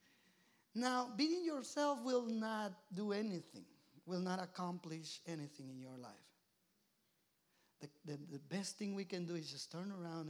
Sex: male